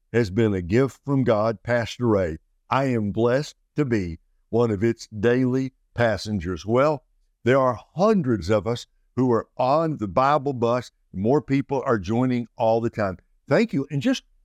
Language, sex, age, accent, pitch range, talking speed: English, male, 60-79, American, 105-135 Hz, 170 wpm